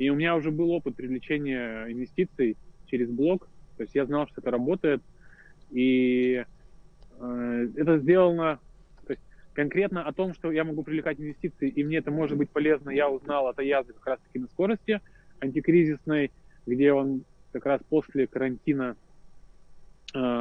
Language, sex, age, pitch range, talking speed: Russian, male, 20-39, 130-155 Hz, 160 wpm